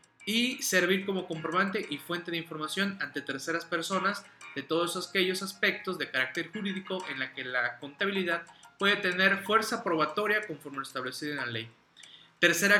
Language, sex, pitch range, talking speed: Spanish, male, 145-190 Hz, 160 wpm